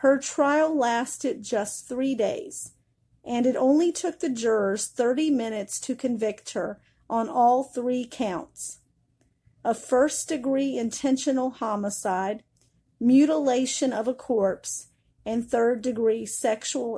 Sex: female